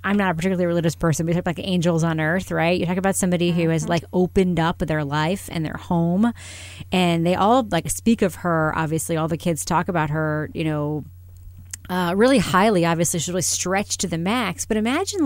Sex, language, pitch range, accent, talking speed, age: female, English, 165-235 Hz, American, 220 wpm, 30-49